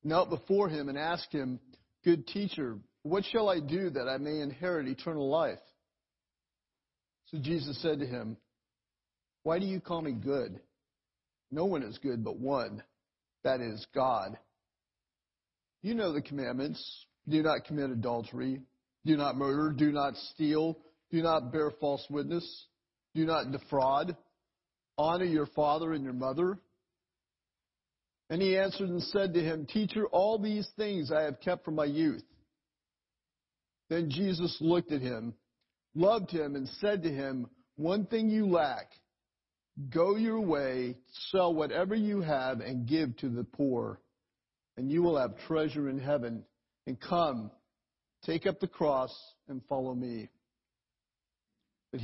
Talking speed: 145 wpm